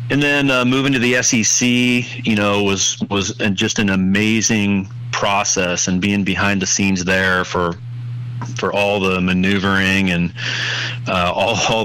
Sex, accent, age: male, American, 30-49